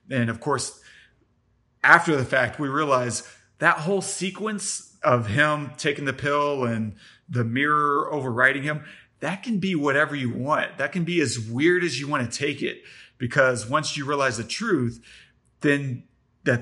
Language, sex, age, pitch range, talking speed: English, male, 30-49, 125-155 Hz, 165 wpm